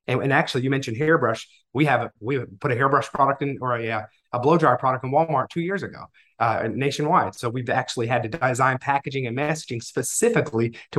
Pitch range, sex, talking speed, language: 120-150 Hz, male, 200 wpm, English